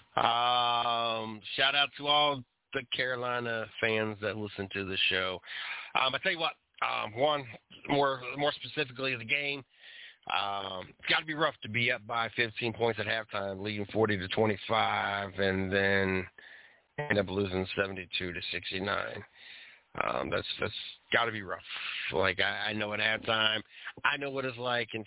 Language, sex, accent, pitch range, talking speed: English, male, American, 105-130 Hz, 165 wpm